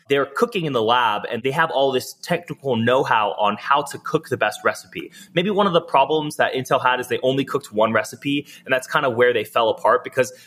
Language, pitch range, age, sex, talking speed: English, 125-170 Hz, 20-39, male, 240 wpm